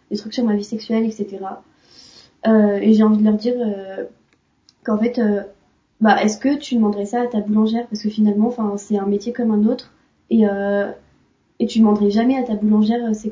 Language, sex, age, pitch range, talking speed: French, female, 20-39, 205-230 Hz, 215 wpm